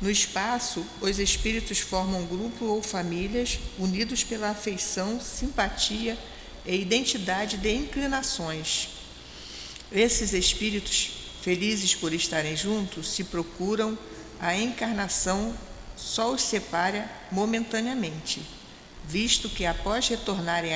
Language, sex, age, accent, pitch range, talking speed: Portuguese, female, 50-69, Brazilian, 170-220 Hz, 100 wpm